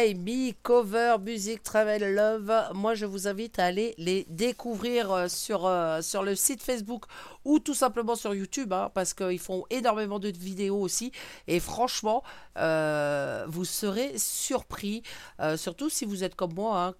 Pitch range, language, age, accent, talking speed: 190-250 Hz, French, 50-69, French, 160 wpm